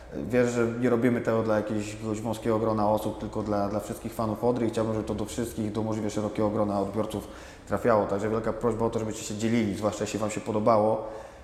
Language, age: Polish, 20-39